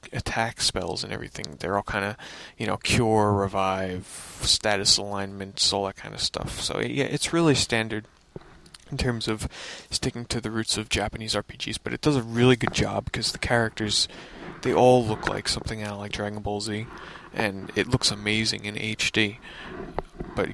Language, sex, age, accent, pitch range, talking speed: English, male, 20-39, American, 100-120 Hz, 180 wpm